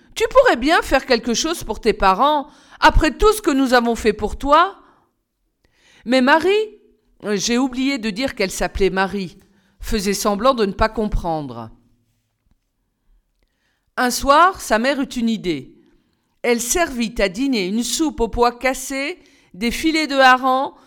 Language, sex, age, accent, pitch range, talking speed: French, female, 50-69, French, 200-280 Hz, 150 wpm